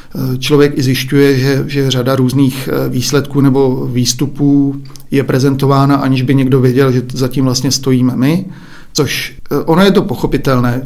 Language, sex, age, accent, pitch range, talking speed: Czech, male, 40-59, native, 130-140 Hz, 145 wpm